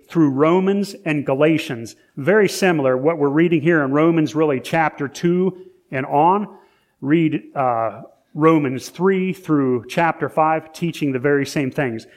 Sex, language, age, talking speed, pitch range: male, English, 40-59, 145 wpm, 145-185 Hz